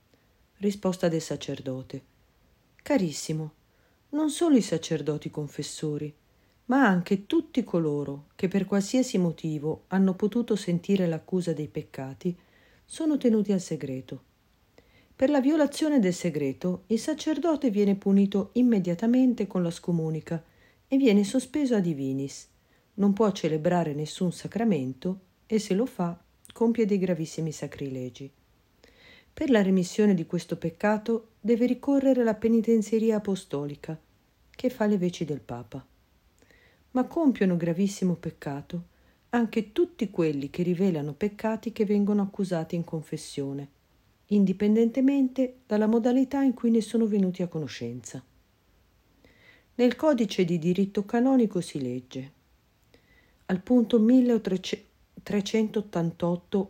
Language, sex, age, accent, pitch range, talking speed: Italian, female, 50-69, native, 155-225 Hz, 115 wpm